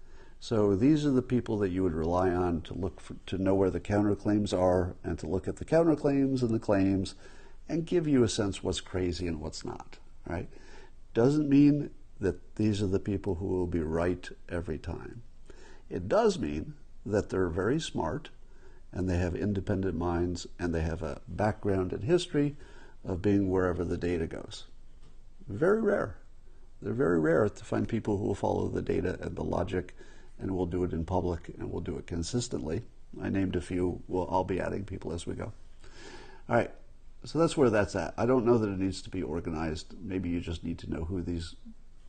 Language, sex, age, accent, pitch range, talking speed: English, male, 50-69, American, 90-115 Hz, 200 wpm